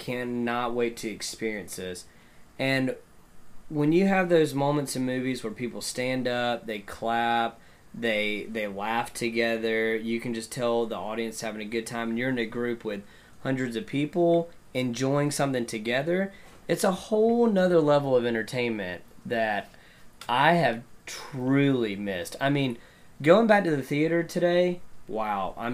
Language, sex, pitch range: English, male, 115-140 Hz